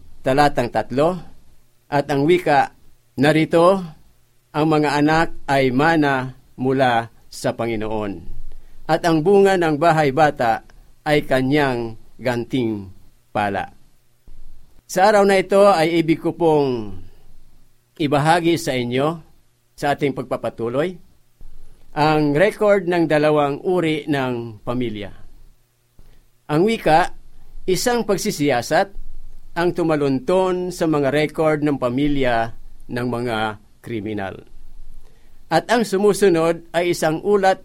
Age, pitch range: 50-69, 120-170 Hz